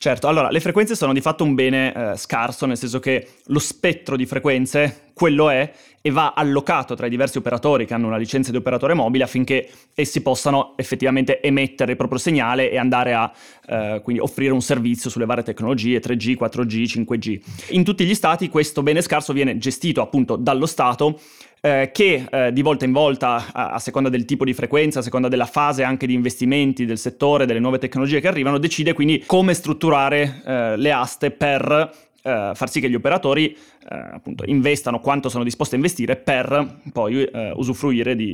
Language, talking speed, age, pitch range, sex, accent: Italian, 195 wpm, 20-39, 125-150 Hz, male, native